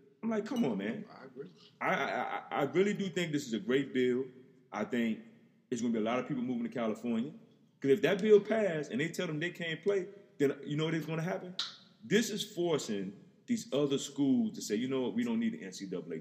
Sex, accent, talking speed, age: male, American, 240 wpm, 30-49